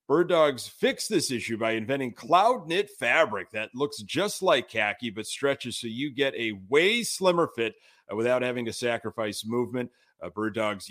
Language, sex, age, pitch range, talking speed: English, male, 30-49, 110-135 Hz, 175 wpm